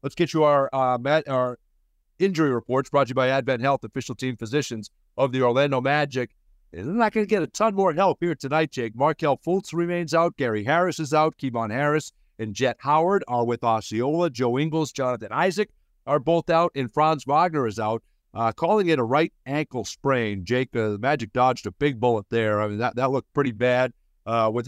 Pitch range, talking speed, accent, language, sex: 120-155 Hz, 215 wpm, American, English, male